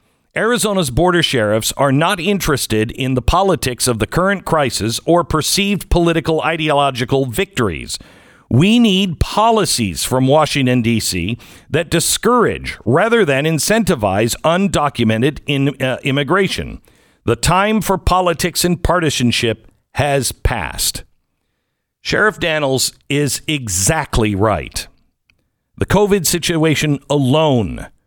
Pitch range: 125-185 Hz